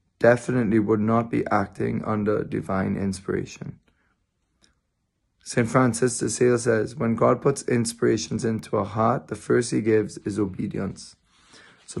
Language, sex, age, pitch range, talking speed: English, male, 20-39, 105-115 Hz, 135 wpm